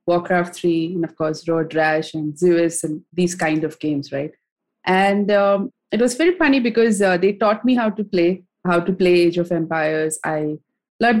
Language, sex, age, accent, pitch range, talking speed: English, female, 20-39, Indian, 170-210 Hz, 200 wpm